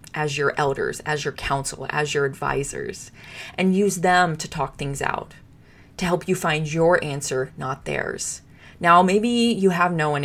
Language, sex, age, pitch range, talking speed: English, female, 20-39, 145-180 Hz, 175 wpm